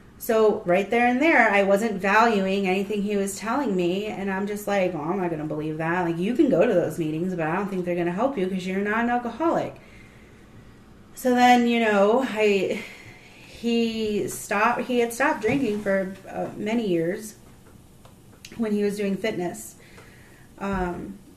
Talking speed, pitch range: 185 wpm, 185-220 Hz